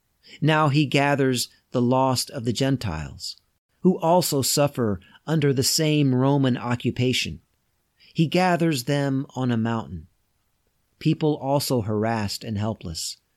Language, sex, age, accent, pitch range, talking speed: English, male, 40-59, American, 100-140 Hz, 120 wpm